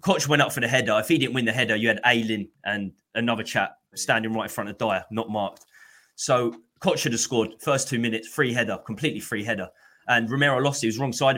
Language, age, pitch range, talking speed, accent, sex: English, 20-39, 115-145 Hz, 255 wpm, British, male